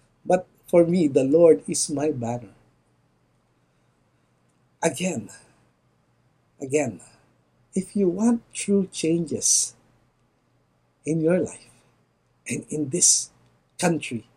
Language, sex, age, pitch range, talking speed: English, male, 60-79, 150-215 Hz, 90 wpm